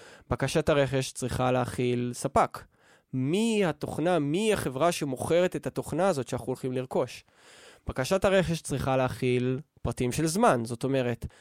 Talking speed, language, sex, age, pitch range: 130 wpm, Hebrew, male, 20-39, 125-165 Hz